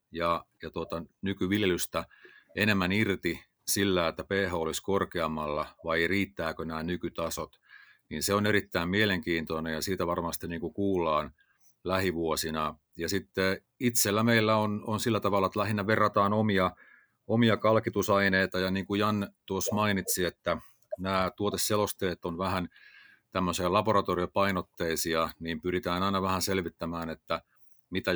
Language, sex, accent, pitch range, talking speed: Finnish, male, native, 85-100 Hz, 125 wpm